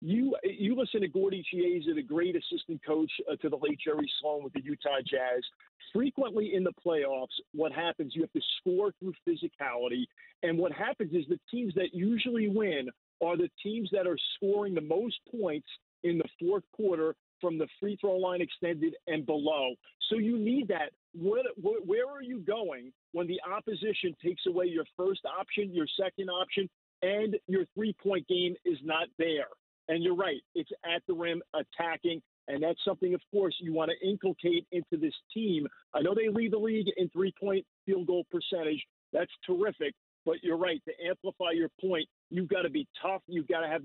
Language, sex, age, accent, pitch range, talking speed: English, male, 50-69, American, 165-215 Hz, 190 wpm